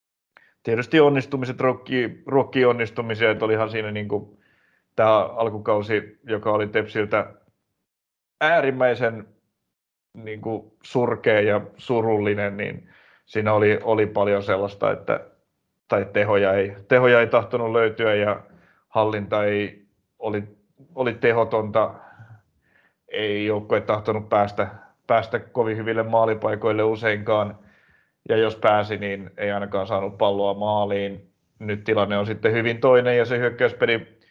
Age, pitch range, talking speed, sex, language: 30-49, 105-115 Hz, 115 wpm, male, Finnish